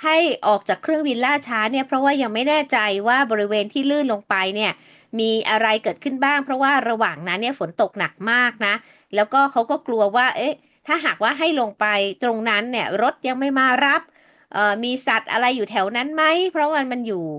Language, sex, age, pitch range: Thai, female, 20-39, 205-270 Hz